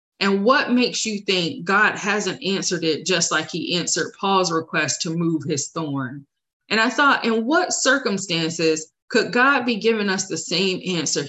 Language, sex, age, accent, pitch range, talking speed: English, female, 20-39, American, 170-225 Hz, 175 wpm